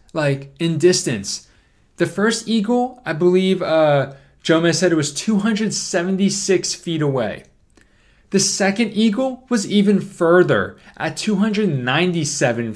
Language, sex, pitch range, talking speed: English, male, 140-190 Hz, 115 wpm